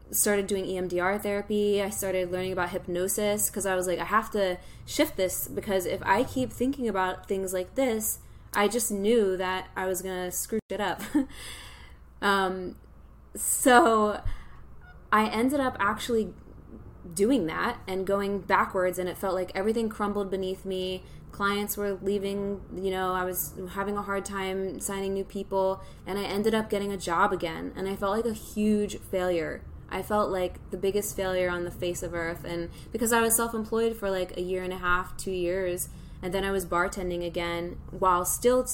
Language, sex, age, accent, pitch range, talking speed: English, female, 10-29, American, 180-215 Hz, 185 wpm